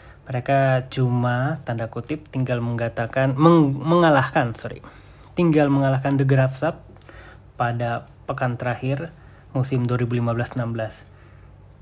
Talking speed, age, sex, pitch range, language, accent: 90 wpm, 20-39, male, 110-135 Hz, Indonesian, native